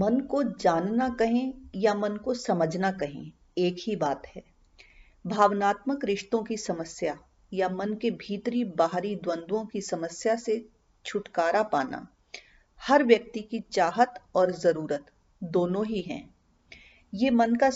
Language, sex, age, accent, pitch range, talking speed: Hindi, female, 40-59, native, 180-230 Hz, 135 wpm